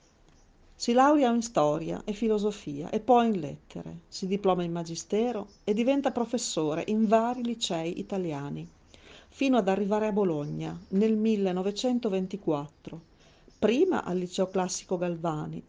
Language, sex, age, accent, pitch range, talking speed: Italian, female, 40-59, native, 160-230 Hz, 125 wpm